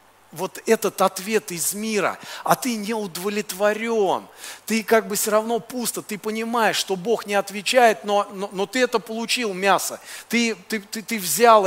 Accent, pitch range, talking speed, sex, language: native, 165-210 Hz, 165 wpm, male, Russian